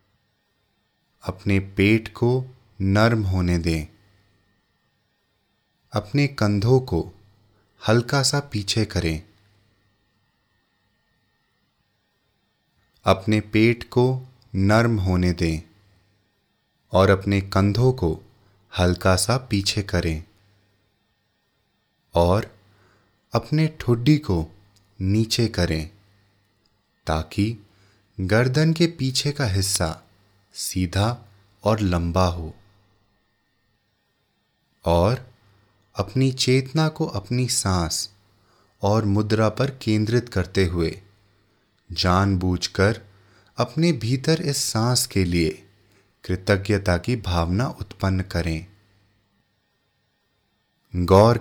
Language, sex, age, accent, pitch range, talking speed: English, male, 30-49, Indian, 95-110 Hz, 80 wpm